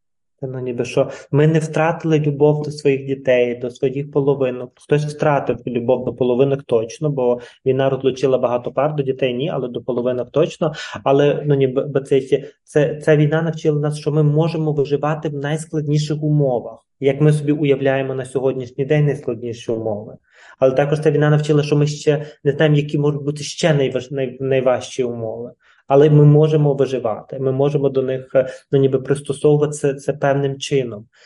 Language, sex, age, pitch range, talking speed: Ukrainian, male, 20-39, 135-150 Hz, 170 wpm